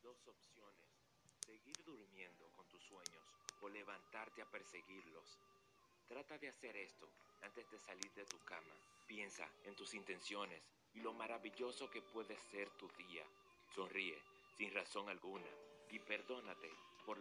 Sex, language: male, Spanish